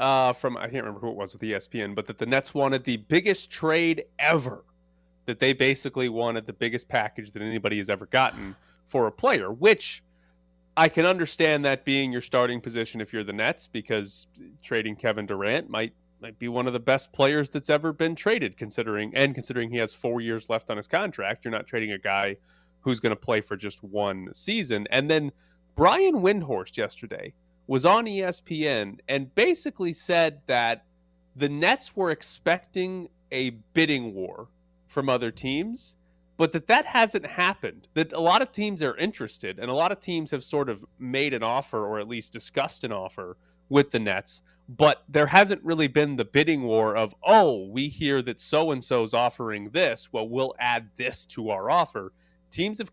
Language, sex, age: English, male, 30-49